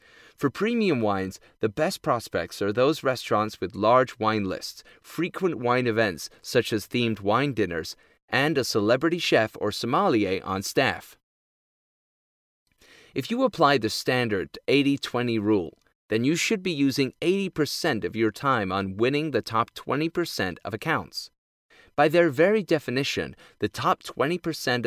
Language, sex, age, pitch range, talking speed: English, male, 30-49, 115-175 Hz, 140 wpm